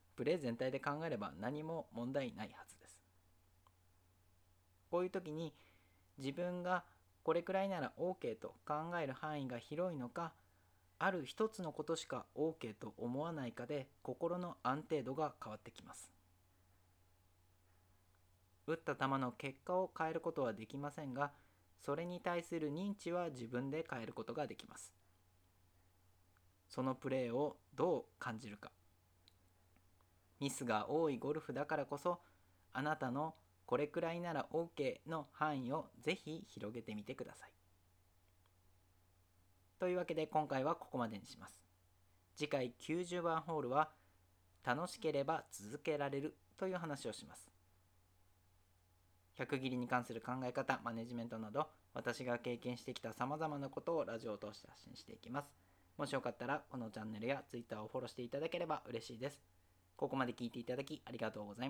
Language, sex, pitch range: Japanese, male, 95-155 Hz